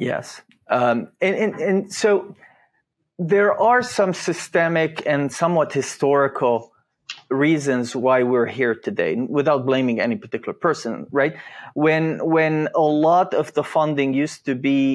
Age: 30-49